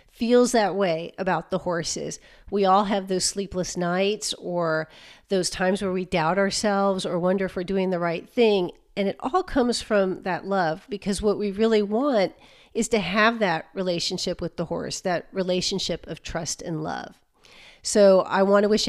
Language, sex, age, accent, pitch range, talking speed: English, female, 40-59, American, 180-215 Hz, 180 wpm